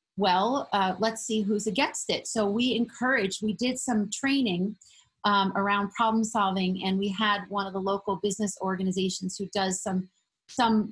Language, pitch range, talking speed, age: English, 200-235 Hz, 170 wpm, 30-49